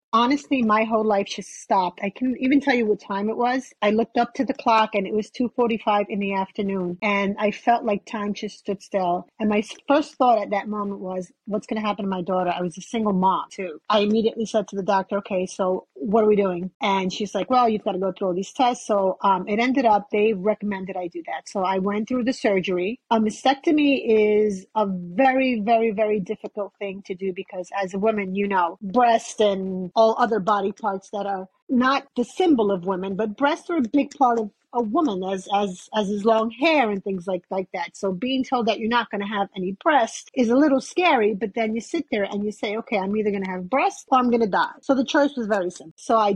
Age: 30-49